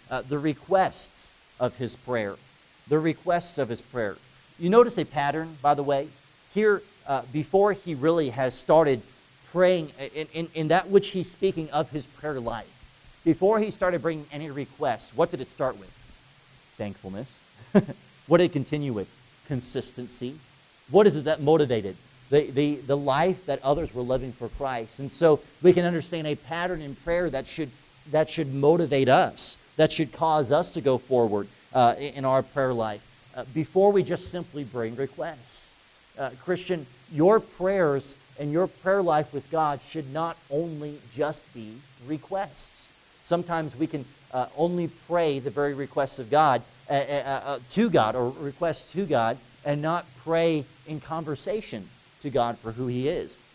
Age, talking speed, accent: 40-59, 170 wpm, American